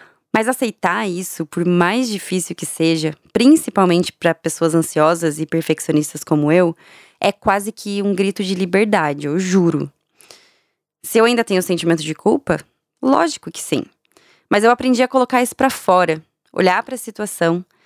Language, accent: Portuguese, Brazilian